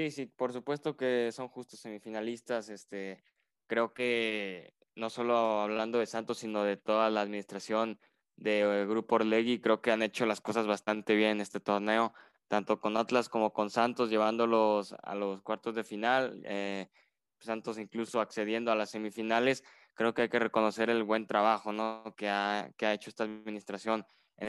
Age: 10-29